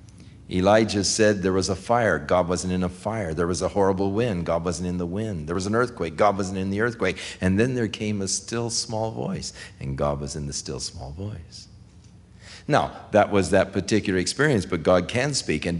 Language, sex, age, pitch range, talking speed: English, male, 50-69, 90-110 Hz, 215 wpm